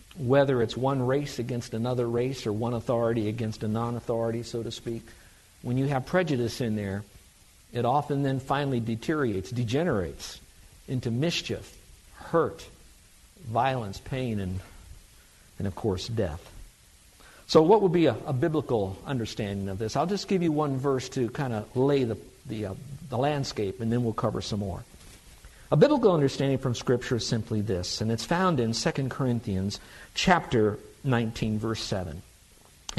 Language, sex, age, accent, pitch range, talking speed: English, male, 50-69, American, 110-145 Hz, 160 wpm